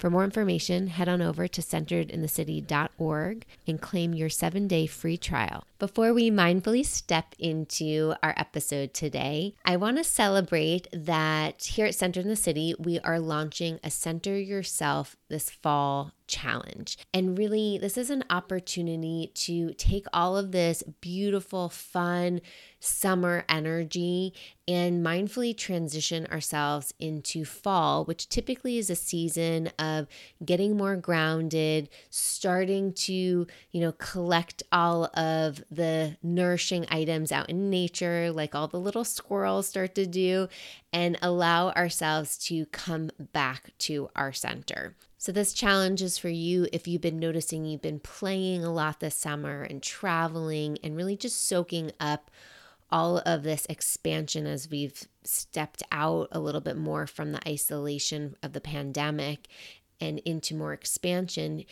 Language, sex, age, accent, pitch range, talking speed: English, female, 20-39, American, 155-185 Hz, 145 wpm